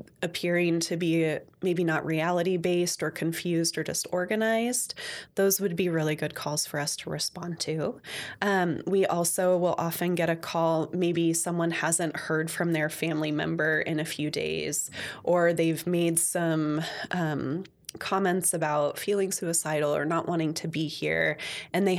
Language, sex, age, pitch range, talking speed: English, female, 20-39, 160-185 Hz, 160 wpm